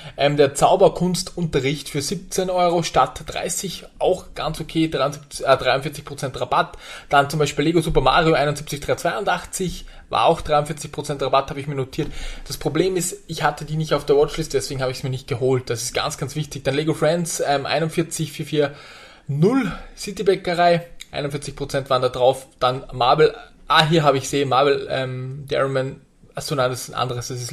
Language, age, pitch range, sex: German, 20-39, 135-155 Hz, male